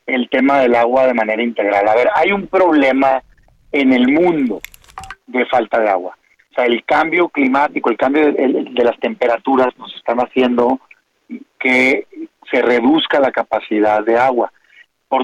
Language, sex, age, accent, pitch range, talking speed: Spanish, male, 40-59, Mexican, 130-220 Hz, 160 wpm